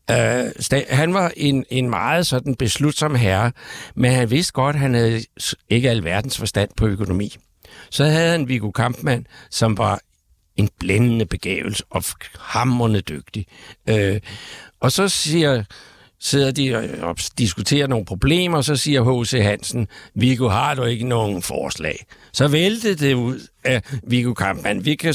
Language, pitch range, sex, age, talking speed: Danish, 110-145 Hz, male, 60-79, 155 wpm